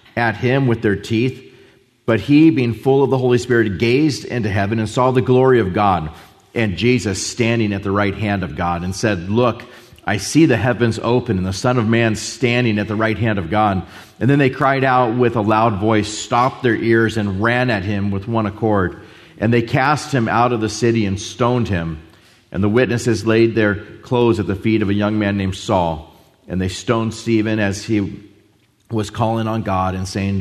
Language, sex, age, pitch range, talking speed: English, male, 40-59, 100-120 Hz, 215 wpm